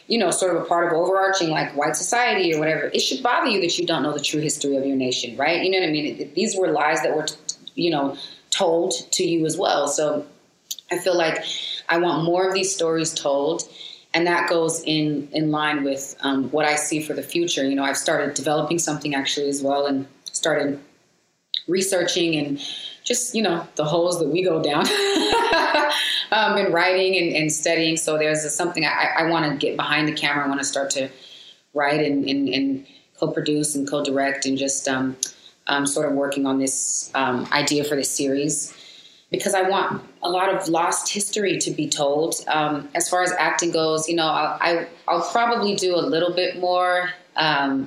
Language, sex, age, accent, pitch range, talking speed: English, female, 20-39, American, 145-175 Hz, 205 wpm